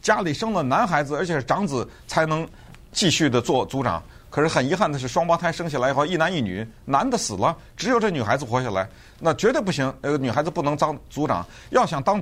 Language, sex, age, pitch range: Chinese, male, 50-69, 115-160 Hz